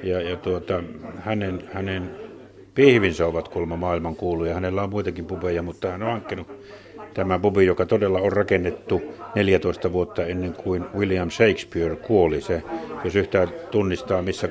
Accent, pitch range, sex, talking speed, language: native, 85-105 Hz, male, 150 wpm, Finnish